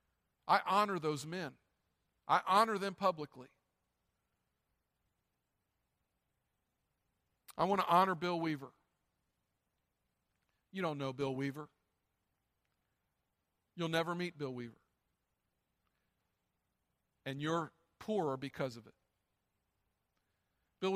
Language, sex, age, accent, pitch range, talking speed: English, male, 50-69, American, 140-170 Hz, 90 wpm